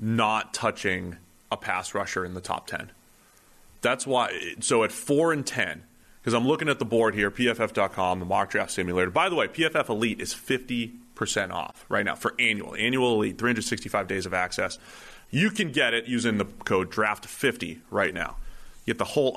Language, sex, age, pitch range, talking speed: English, male, 30-49, 100-140 Hz, 190 wpm